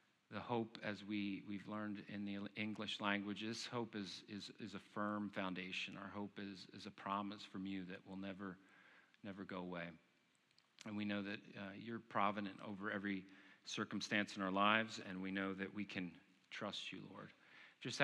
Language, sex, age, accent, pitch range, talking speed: English, male, 40-59, American, 100-115 Hz, 185 wpm